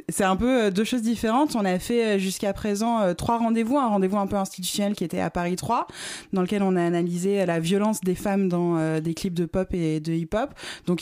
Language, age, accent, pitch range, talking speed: French, 20-39, French, 170-200 Hz, 225 wpm